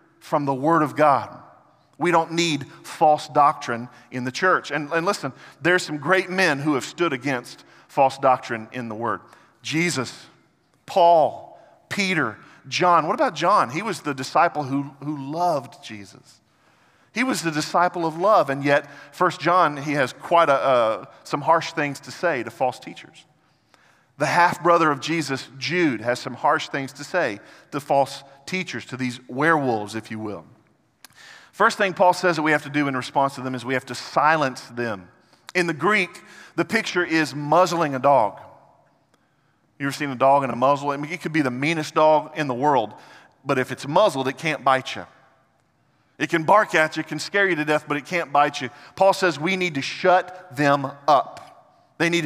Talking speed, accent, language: 195 wpm, American, English